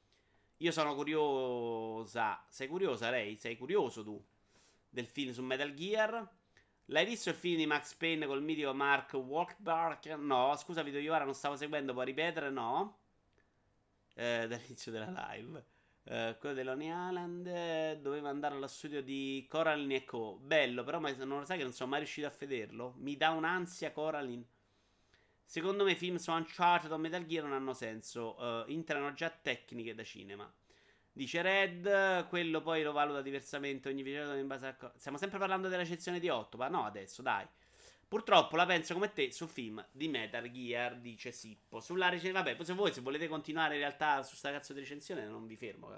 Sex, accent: male, native